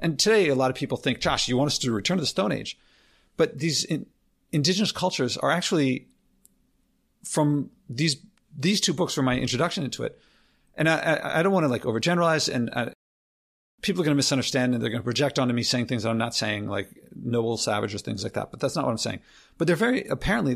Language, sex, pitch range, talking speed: English, male, 125-160 Hz, 230 wpm